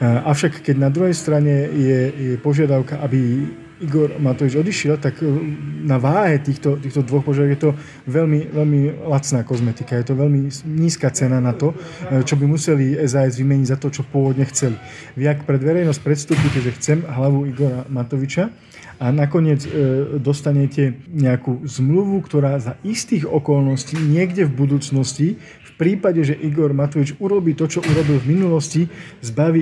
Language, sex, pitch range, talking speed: Slovak, male, 135-155 Hz, 150 wpm